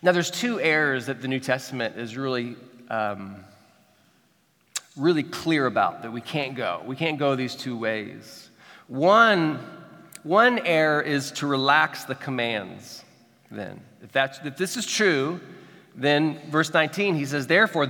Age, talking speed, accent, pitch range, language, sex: 40-59, 150 wpm, American, 140-185 Hz, English, male